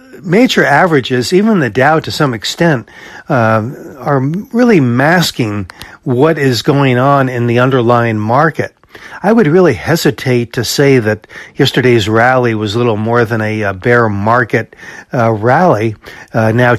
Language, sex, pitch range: English, male, 115-140 Hz